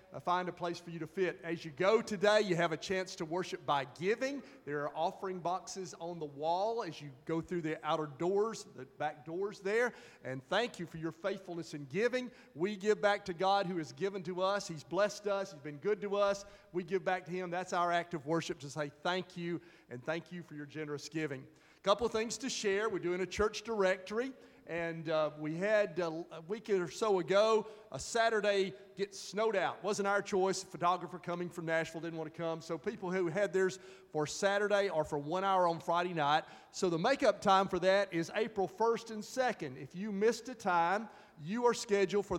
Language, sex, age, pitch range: English, male, 40-59, 165-200 Hz